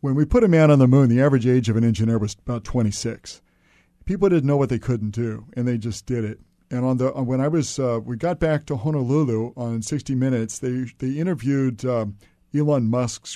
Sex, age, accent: male, 50-69, American